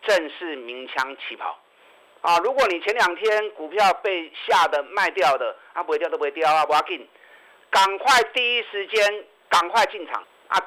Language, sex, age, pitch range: Chinese, male, 50-69, 150-215 Hz